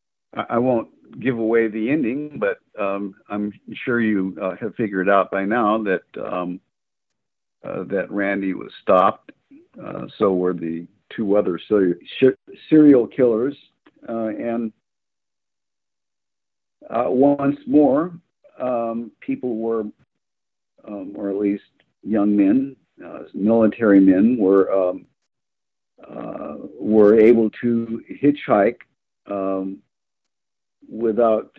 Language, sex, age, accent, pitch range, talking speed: English, male, 50-69, American, 100-155 Hz, 110 wpm